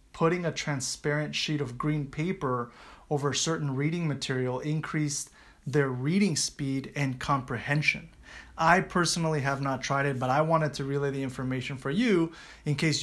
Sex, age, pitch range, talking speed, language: male, 30-49, 135-155 Hz, 160 wpm, English